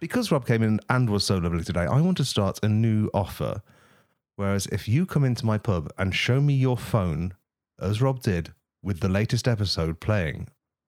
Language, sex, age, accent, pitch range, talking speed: English, male, 40-59, British, 100-125 Hz, 200 wpm